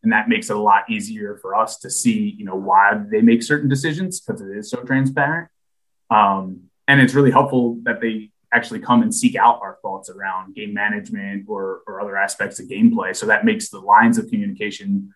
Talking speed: 210 wpm